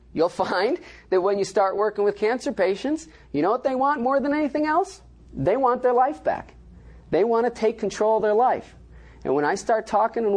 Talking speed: 220 wpm